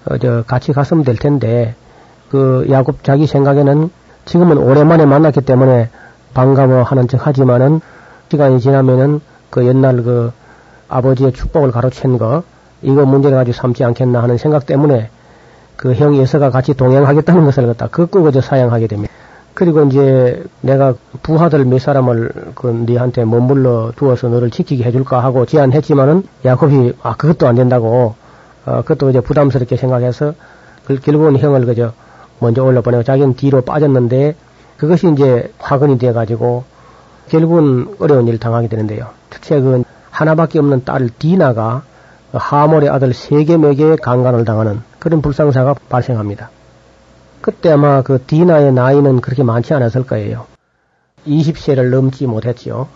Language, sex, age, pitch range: Korean, male, 40-59, 125-145 Hz